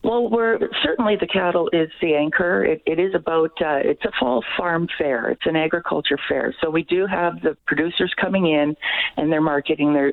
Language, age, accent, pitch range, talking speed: English, 50-69, American, 145-175 Hz, 195 wpm